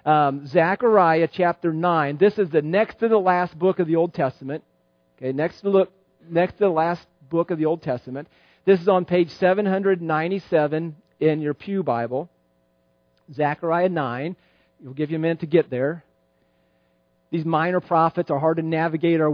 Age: 40-59